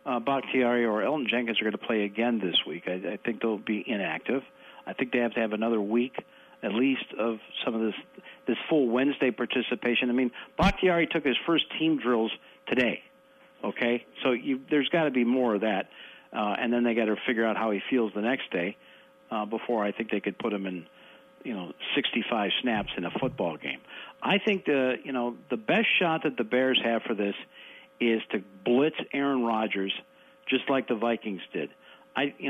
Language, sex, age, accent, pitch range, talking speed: English, male, 50-69, American, 110-135 Hz, 205 wpm